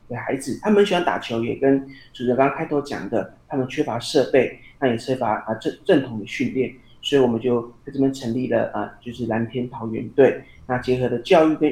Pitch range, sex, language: 115-140 Hz, male, Chinese